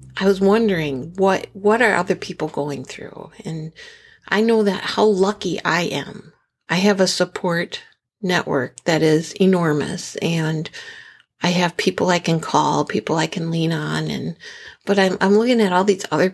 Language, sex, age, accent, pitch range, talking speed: English, female, 60-79, American, 160-210 Hz, 175 wpm